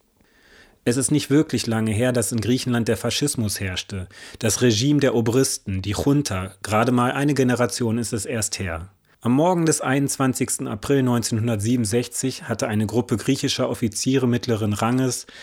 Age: 30-49